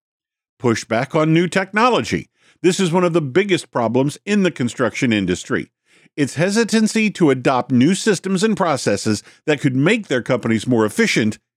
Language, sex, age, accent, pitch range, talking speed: English, male, 50-69, American, 120-185 Hz, 155 wpm